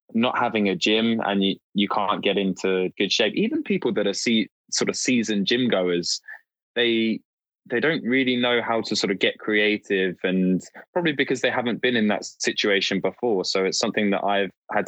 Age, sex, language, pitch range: 20-39, male, English, 90-105 Hz